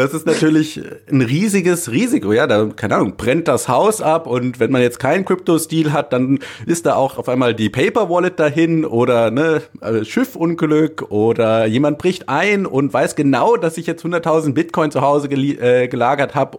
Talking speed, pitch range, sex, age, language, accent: 180 wpm, 120-155 Hz, male, 30-49, German, German